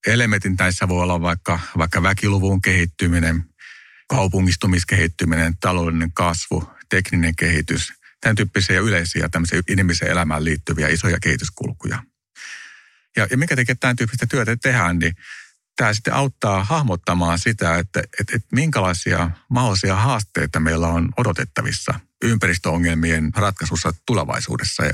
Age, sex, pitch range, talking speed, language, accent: 50-69, male, 85-110 Hz, 115 wpm, English, Finnish